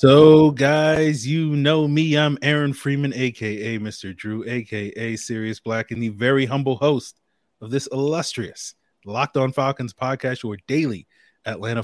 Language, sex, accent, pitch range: English, male, American, 110-140 Hz